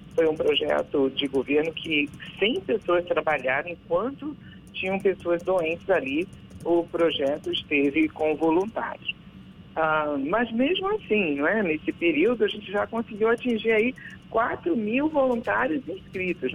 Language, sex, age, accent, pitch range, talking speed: Portuguese, male, 50-69, Brazilian, 155-245 Hz, 130 wpm